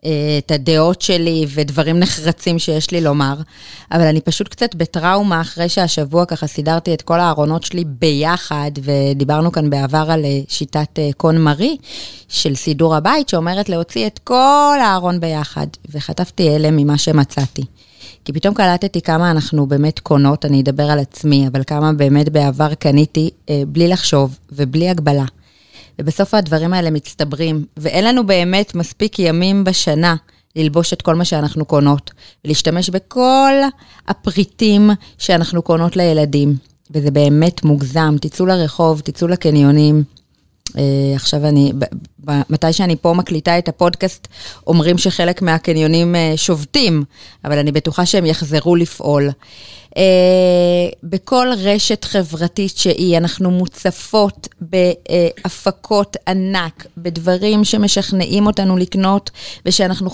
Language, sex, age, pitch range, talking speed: Hebrew, female, 20-39, 150-185 Hz, 125 wpm